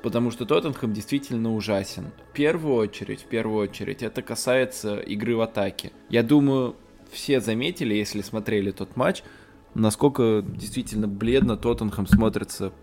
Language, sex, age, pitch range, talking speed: Russian, male, 20-39, 105-120 Hz, 135 wpm